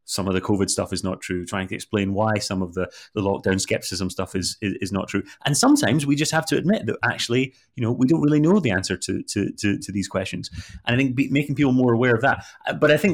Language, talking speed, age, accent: English, 275 wpm, 30-49, British